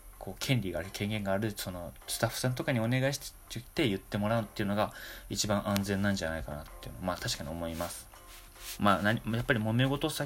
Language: Japanese